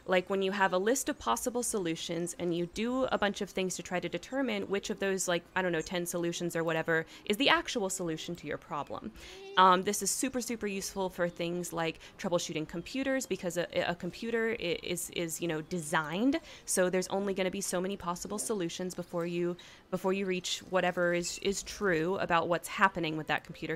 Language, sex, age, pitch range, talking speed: English, female, 20-39, 175-200 Hz, 210 wpm